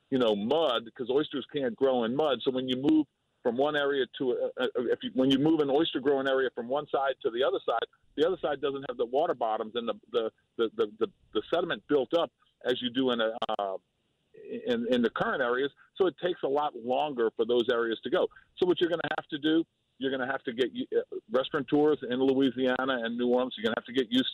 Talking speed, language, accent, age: 250 wpm, English, American, 50-69